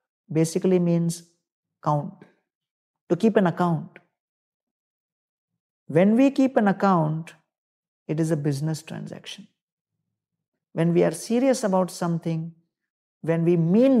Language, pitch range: English, 155-190 Hz